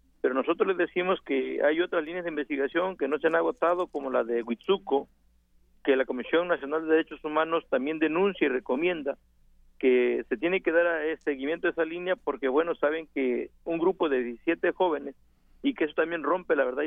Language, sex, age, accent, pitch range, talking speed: Spanish, male, 50-69, Mexican, 140-185 Hz, 195 wpm